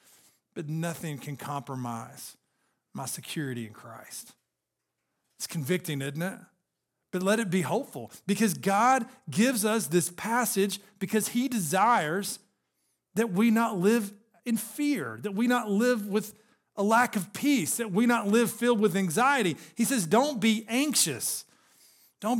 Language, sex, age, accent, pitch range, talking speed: English, male, 40-59, American, 190-240 Hz, 145 wpm